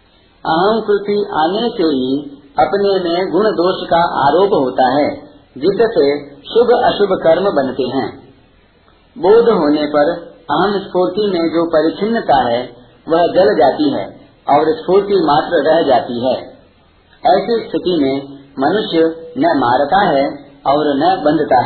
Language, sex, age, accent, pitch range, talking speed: Hindi, male, 50-69, native, 140-210 Hz, 135 wpm